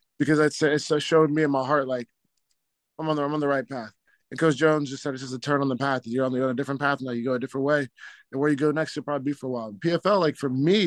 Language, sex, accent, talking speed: English, male, American, 325 wpm